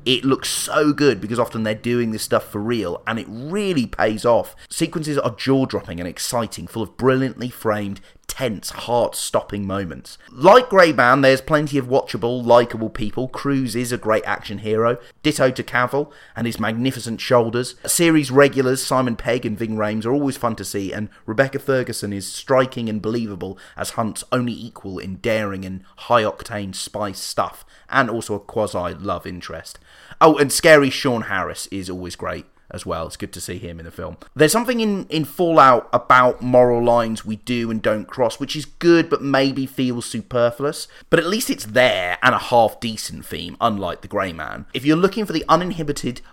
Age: 30-49